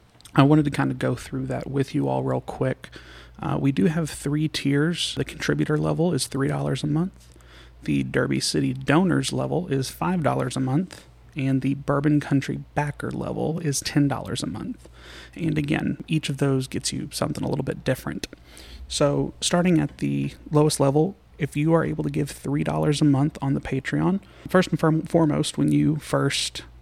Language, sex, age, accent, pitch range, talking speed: English, male, 30-49, American, 125-155 Hz, 190 wpm